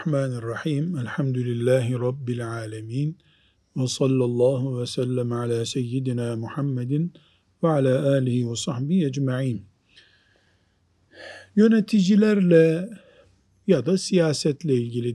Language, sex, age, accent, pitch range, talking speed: Turkish, male, 50-69, native, 115-160 Hz, 50 wpm